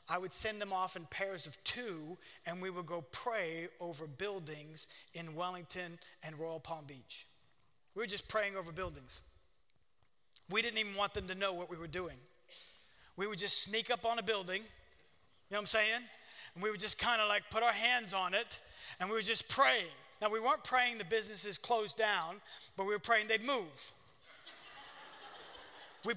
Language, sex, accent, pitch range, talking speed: English, male, American, 180-230 Hz, 195 wpm